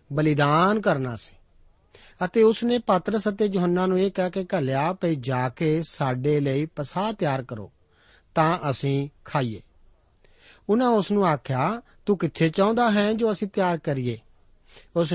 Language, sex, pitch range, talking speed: Punjabi, male, 135-195 Hz, 155 wpm